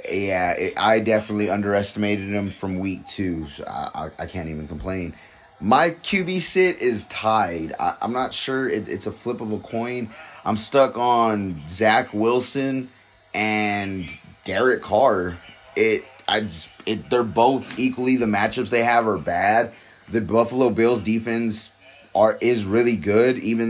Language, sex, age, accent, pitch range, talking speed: English, male, 30-49, American, 105-125 Hz, 155 wpm